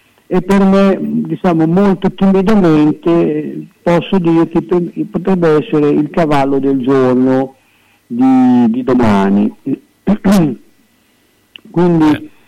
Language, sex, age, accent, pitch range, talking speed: Italian, male, 50-69, native, 140-175 Hz, 90 wpm